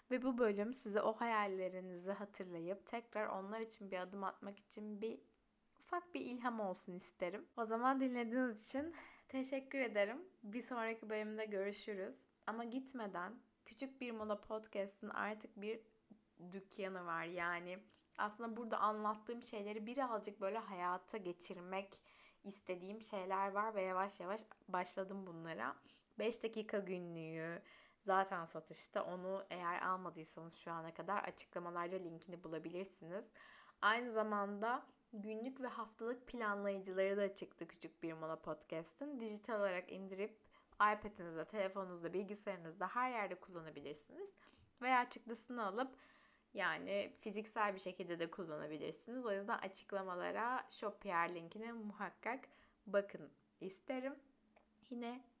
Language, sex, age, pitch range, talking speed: Turkish, female, 10-29, 185-230 Hz, 120 wpm